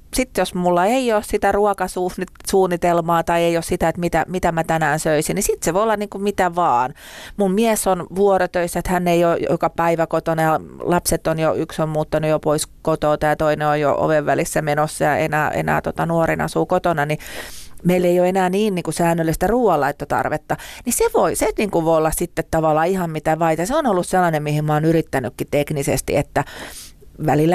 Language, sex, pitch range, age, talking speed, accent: Finnish, female, 155-185 Hz, 30-49, 205 wpm, native